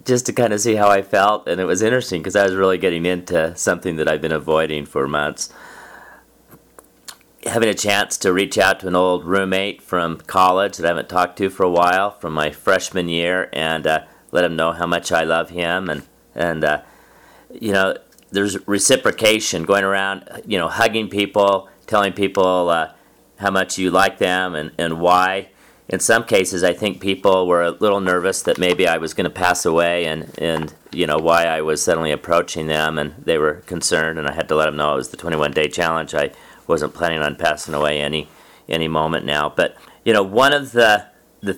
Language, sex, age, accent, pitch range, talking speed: English, male, 40-59, American, 80-100 Hz, 210 wpm